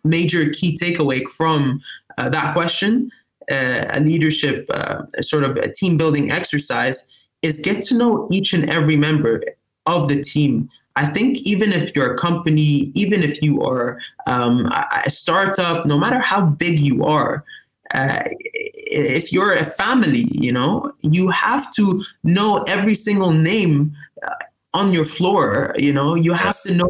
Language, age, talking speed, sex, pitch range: English, 20-39, 160 wpm, male, 150-200 Hz